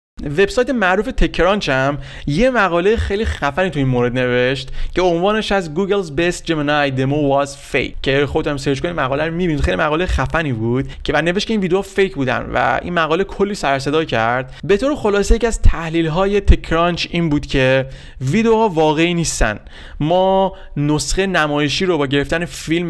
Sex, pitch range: male, 135-175 Hz